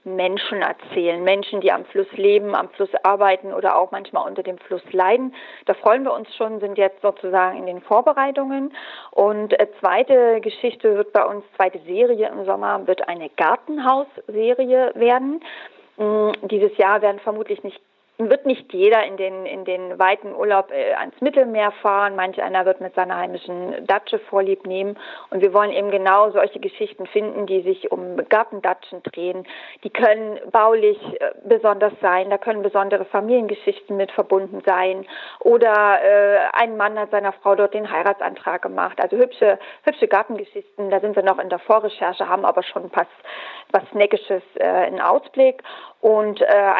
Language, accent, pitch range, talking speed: German, German, 195-240 Hz, 165 wpm